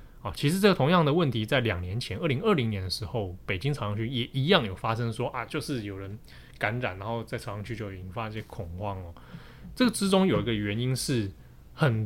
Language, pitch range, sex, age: Chinese, 105-145 Hz, male, 20-39